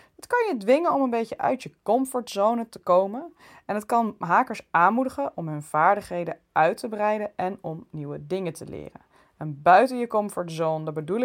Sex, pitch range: female, 165-230 Hz